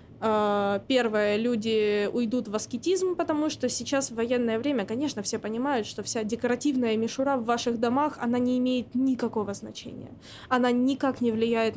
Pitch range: 225-255 Hz